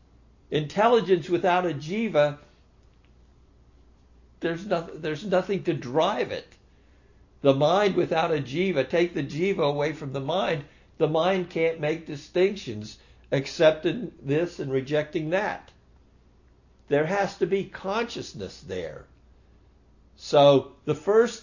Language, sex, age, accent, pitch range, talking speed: English, male, 60-79, American, 105-180 Hz, 115 wpm